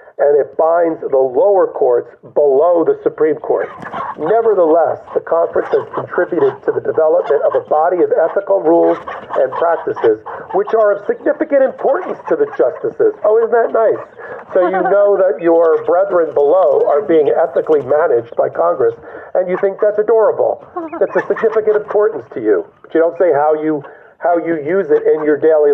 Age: 50-69